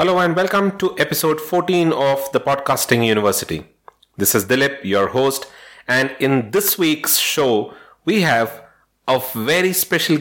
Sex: male